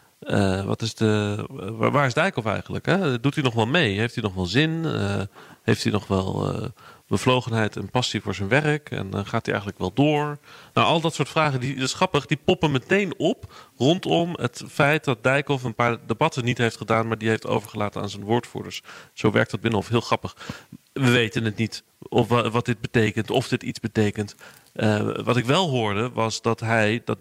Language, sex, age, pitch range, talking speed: Dutch, male, 40-59, 110-135 Hz, 210 wpm